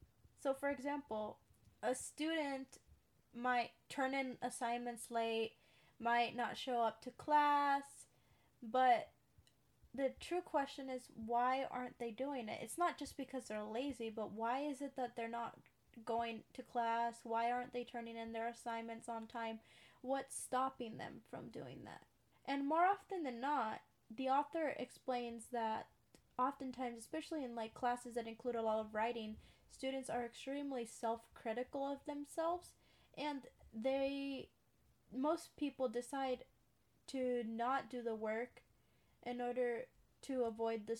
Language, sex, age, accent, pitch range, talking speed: English, female, 10-29, American, 230-270 Hz, 145 wpm